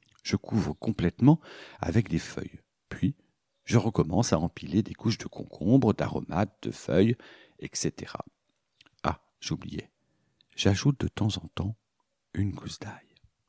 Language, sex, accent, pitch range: French, male, French, 95-140 Hz